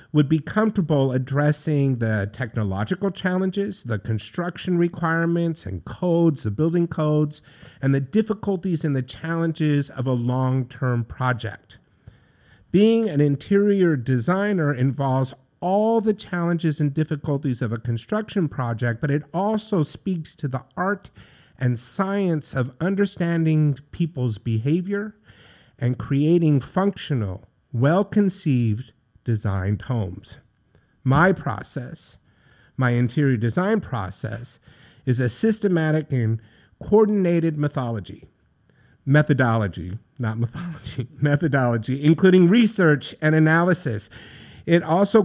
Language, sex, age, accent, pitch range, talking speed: English, male, 50-69, American, 125-175 Hz, 105 wpm